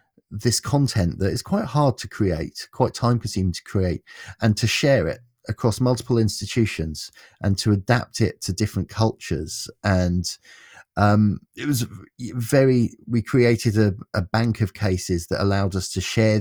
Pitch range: 90-115 Hz